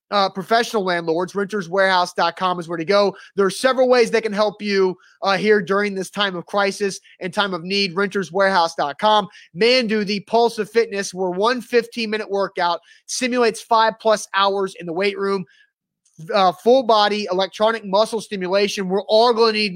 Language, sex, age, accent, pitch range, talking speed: English, male, 30-49, American, 190-225 Hz, 175 wpm